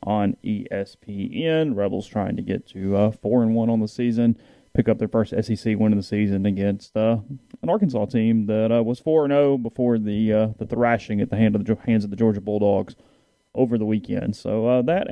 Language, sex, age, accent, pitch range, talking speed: English, male, 30-49, American, 105-125 Hz, 215 wpm